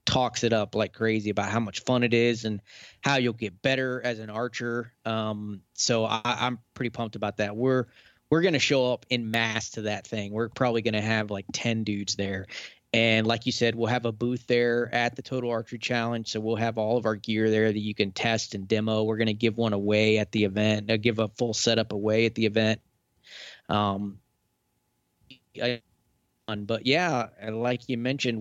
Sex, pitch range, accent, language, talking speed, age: male, 110-125 Hz, American, English, 205 wpm, 20-39